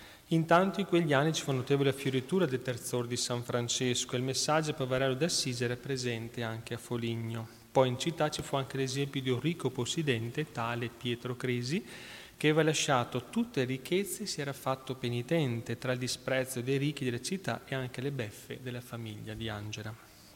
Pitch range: 120-135 Hz